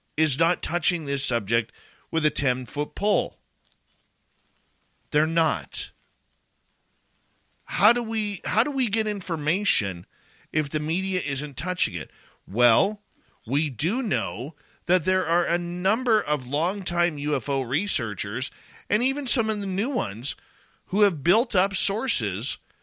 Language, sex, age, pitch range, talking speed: English, male, 40-59, 130-190 Hz, 135 wpm